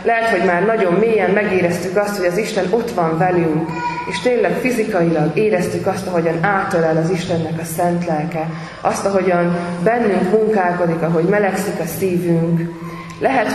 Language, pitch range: Hungarian, 165-195 Hz